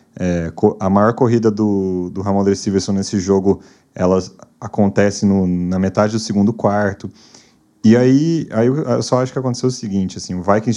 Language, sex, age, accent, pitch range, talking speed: Portuguese, male, 30-49, Brazilian, 100-125 Hz, 175 wpm